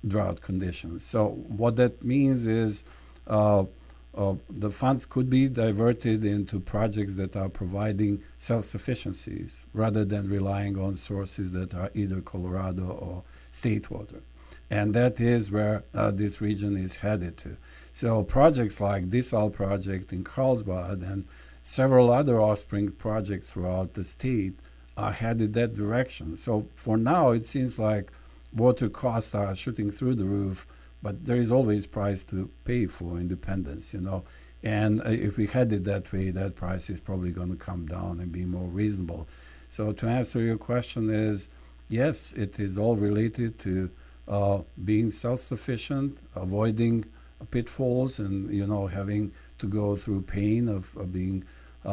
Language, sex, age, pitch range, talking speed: English, male, 50-69, 95-110 Hz, 155 wpm